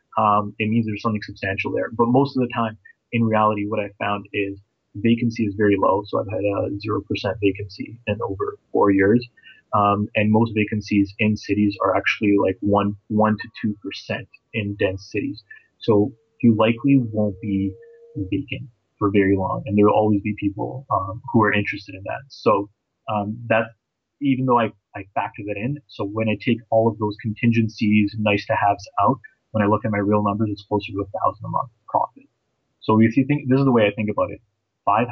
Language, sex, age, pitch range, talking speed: English, male, 30-49, 100-115 Hz, 205 wpm